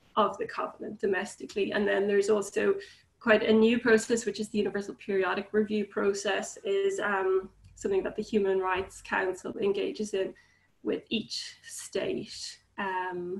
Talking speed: 150 wpm